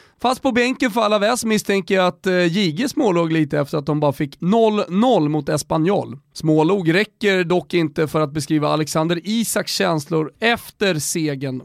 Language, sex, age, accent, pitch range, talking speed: Swedish, male, 30-49, native, 150-215 Hz, 165 wpm